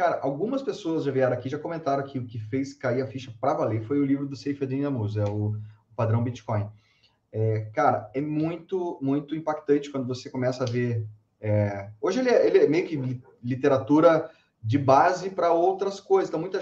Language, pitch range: Portuguese, 115-155 Hz